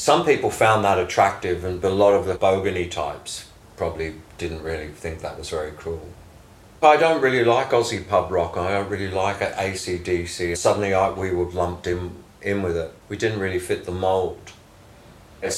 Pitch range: 85-110 Hz